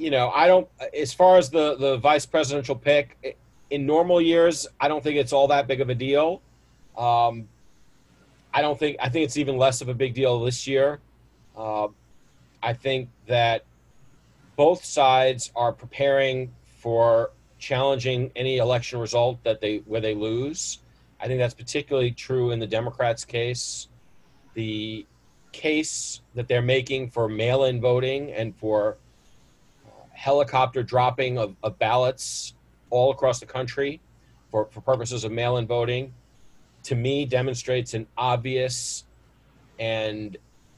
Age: 40-59